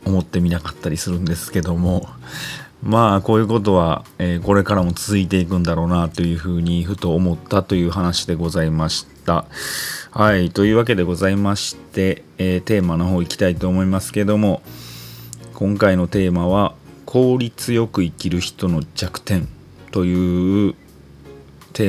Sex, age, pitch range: male, 30-49, 85-100 Hz